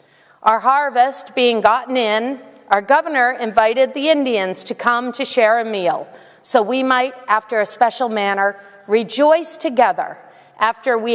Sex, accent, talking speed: female, American, 145 wpm